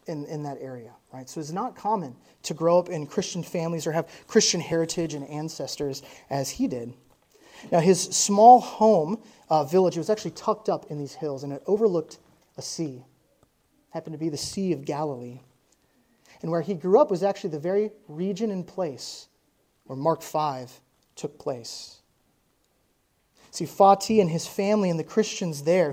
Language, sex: English, male